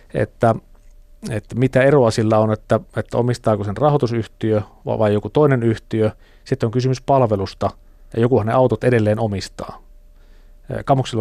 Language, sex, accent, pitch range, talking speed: Finnish, male, native, 105-125 Hz, 145 wpm